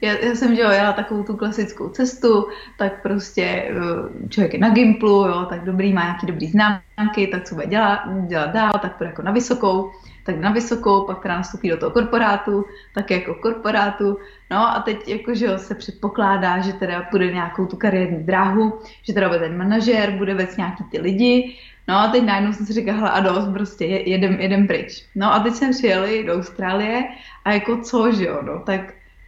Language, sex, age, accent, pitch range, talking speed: Czech, female, 20-39, native, 190-220 Hz, 205 wpm